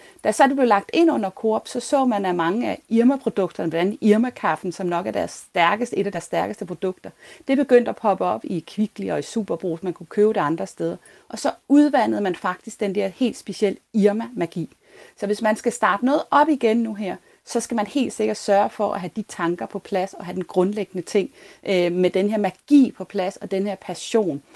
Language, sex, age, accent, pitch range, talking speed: Danish, female, 30-49, native, 180-220 Hz, 215 wpm